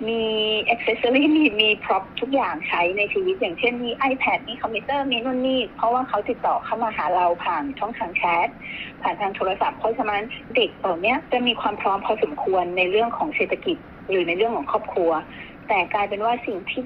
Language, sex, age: Thai, female, 30-49